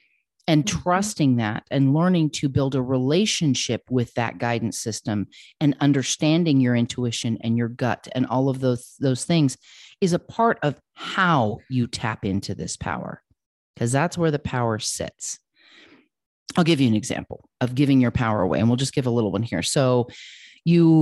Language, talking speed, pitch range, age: English, 175 wpm, 120-165 Hz, 40-59